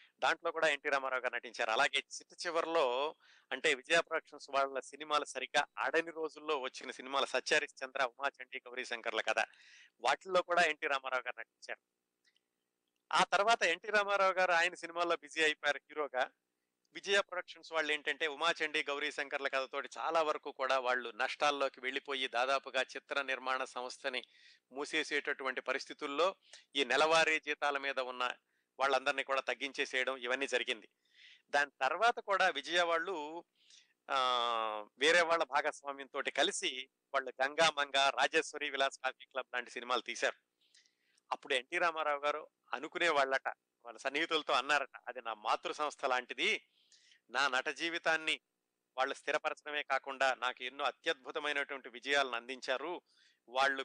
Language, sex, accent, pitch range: Telugu, male, native, 130-155 Hz